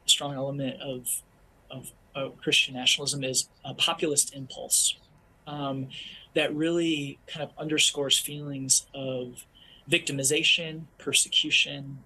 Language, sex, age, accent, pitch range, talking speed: English, male, 20-39, American, 120-145 Hz, 105 wpm